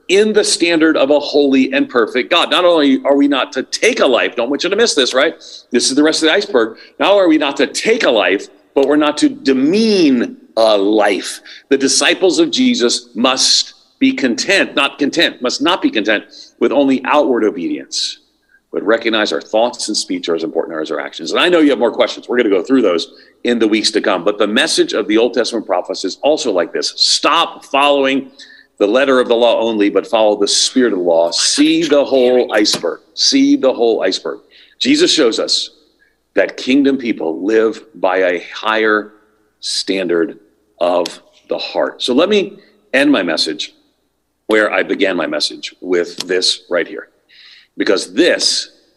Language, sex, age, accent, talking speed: English, male, 50-69, American, 195 wpm